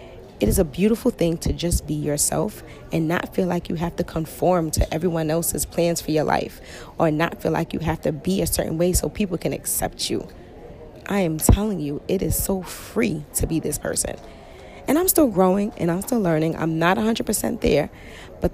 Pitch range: 155-200 Hz